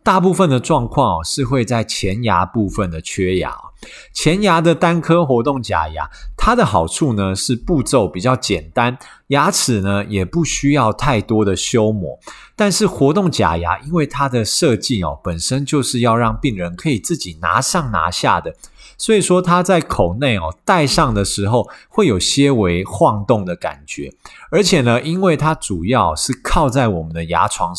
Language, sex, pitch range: Chinese, male, 100-155 Hz